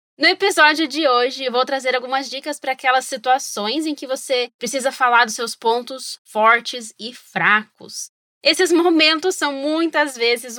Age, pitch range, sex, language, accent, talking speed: 20-39, 245-315 Hz, female, Portuguese, Brazilian, 160 wpm